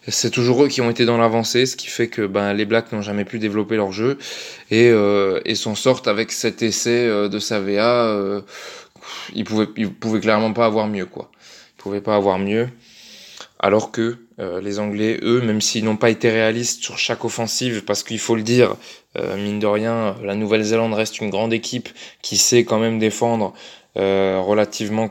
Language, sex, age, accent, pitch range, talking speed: French, male, 20-39, French, 105-120 Hz, 205 wpm